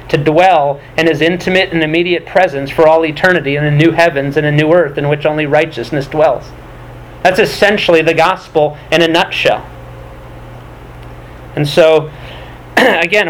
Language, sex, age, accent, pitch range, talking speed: English, male, 40-59, American, 145-180 Hz, 155 wpm